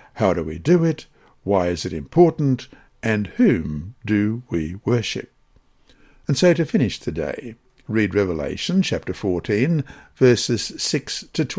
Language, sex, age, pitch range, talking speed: English, male, 60-79, 105-145 Hz, 130 wpm